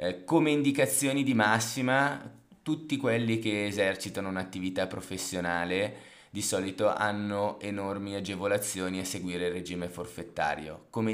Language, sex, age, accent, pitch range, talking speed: Italian, male, 20-39, native, 95-115 Hz, 115 wpm